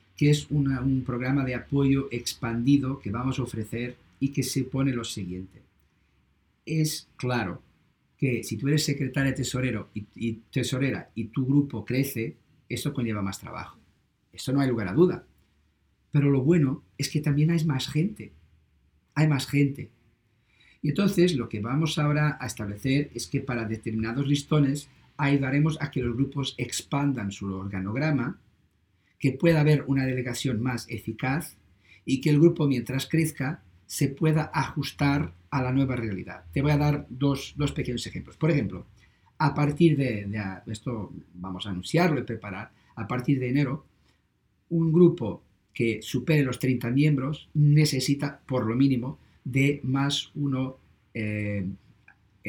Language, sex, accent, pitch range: Spanish, male, Spanish, 110-145 Hz